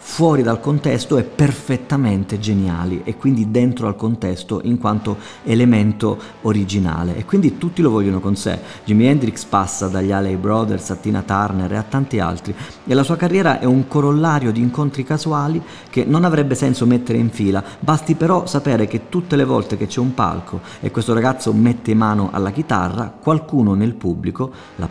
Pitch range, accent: 95-135 Hz, native